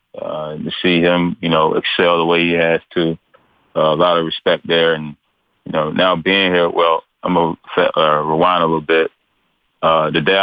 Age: 30-49